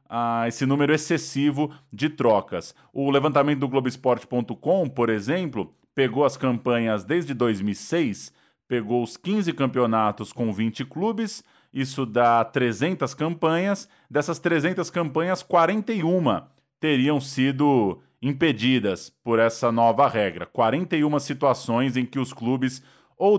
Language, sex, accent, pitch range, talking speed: Portuguese, male, Brazilian, 125-165 Hz, 115 wpm